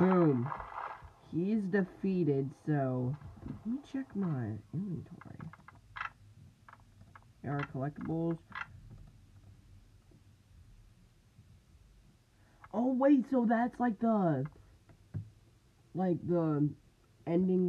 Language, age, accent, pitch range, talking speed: English, 20-39, American, 110-155 Hz, 70 wpm